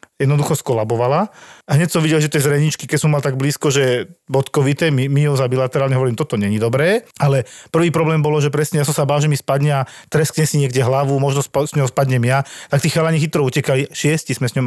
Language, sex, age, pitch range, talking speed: Slovak, male, 40-59, 125-150 Hz, 235 wpm